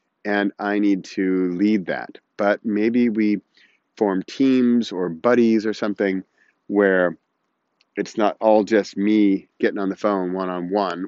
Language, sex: English, male